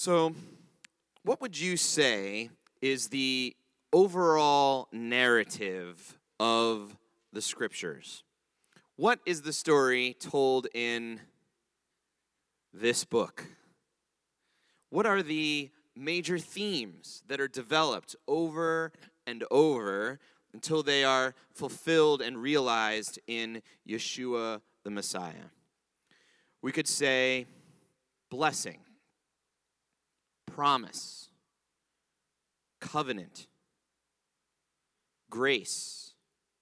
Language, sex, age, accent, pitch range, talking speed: English, male, 30-49, American, 115-155 Hz, 80 wpm